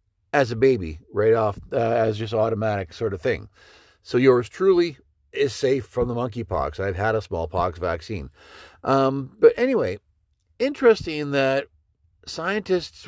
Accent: American